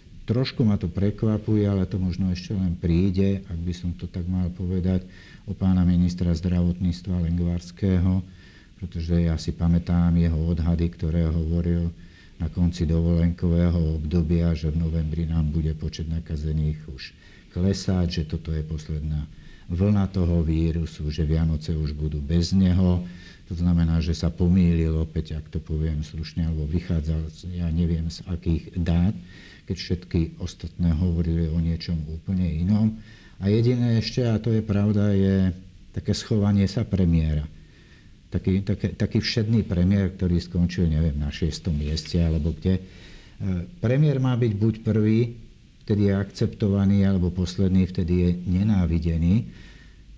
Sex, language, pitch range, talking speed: male, Slovak, 80-95 Hz, 145 wpm